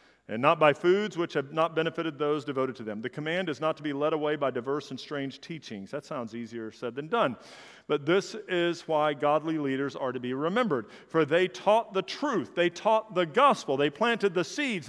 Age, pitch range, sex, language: 50-69, 180-240 Hz, male, English